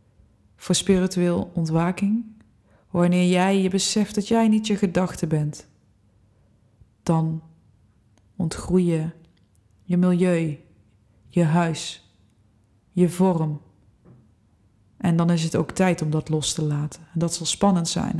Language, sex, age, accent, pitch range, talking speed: Dutch, female, 20-39, Dutch, 140-185 Hz, 125 wpm